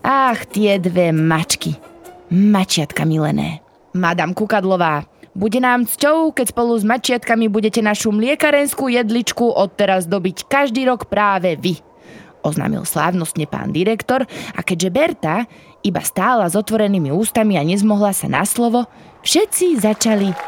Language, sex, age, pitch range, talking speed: Slovak, female, 20-39, 175-255 Hz, 130 wpm